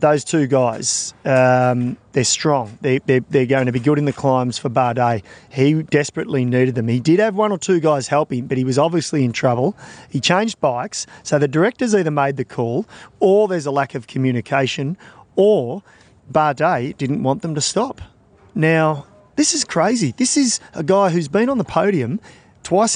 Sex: male